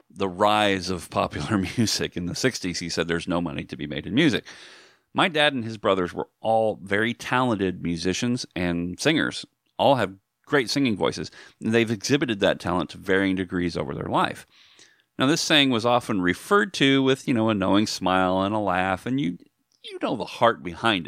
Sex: male